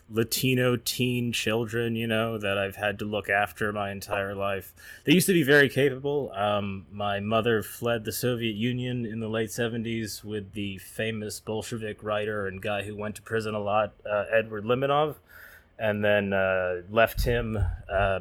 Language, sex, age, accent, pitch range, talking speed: English, male, 20-39, American, 100-115 Hz, 175 wpm